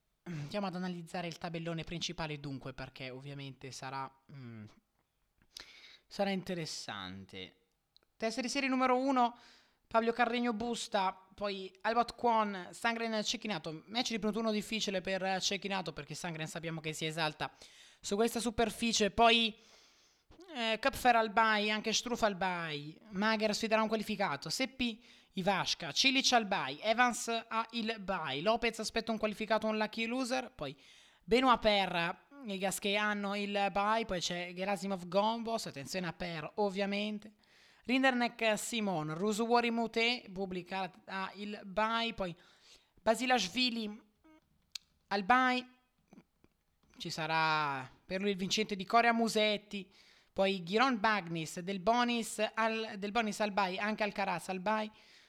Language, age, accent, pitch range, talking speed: Italian, 20-39, native, 180-230 Hz, 130 wpm